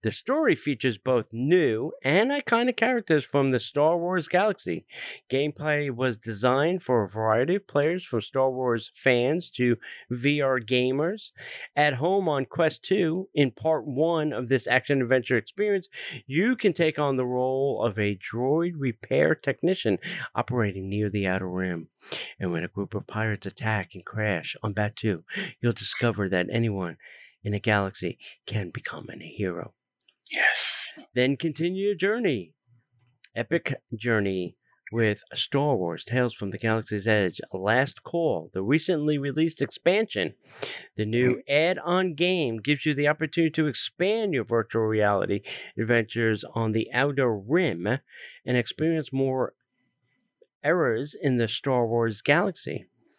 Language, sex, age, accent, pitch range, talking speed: English, male, 40-59, American, 115-155 Hz, 140 wpm